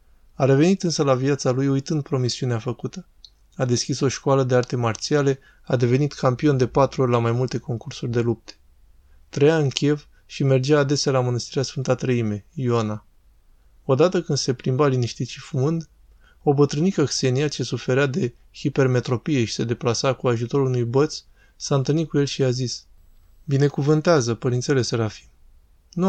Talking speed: 165 wpm